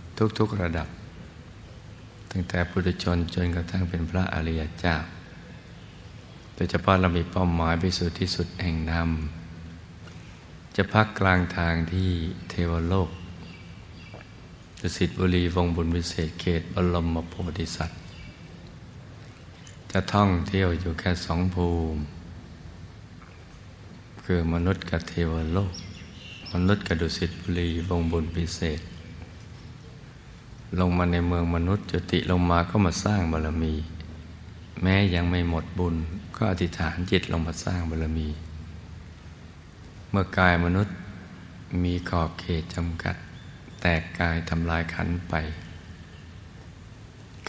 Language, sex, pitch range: Thai, male, 85-95 Hz